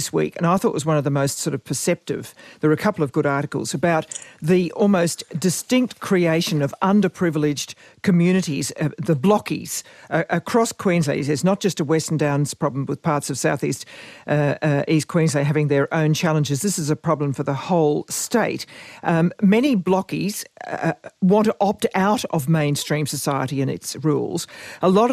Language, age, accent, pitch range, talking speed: English, 50-69, Australian, 155-200 Hz, 190 wpm